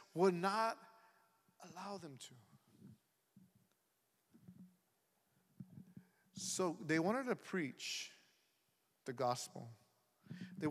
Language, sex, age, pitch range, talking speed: English, male, 50-69, 180-255 Hz, 75 wpm